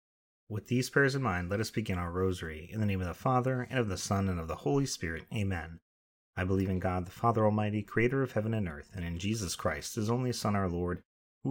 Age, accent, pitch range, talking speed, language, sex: 30-49, American, 85-115 Hz, 250 wpm, English, male